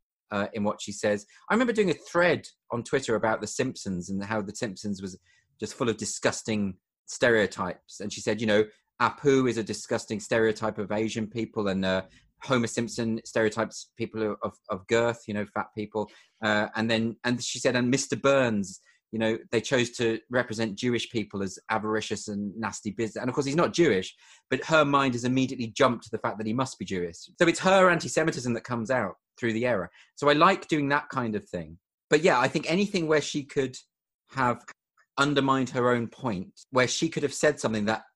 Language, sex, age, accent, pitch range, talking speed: English, male, 30-49, British, 105-140 Hz, 205 wpm